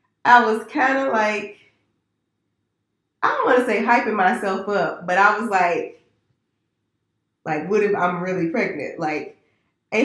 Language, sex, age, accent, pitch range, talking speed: English, female, 20-39, American, 165-205 Hz, 150 wpm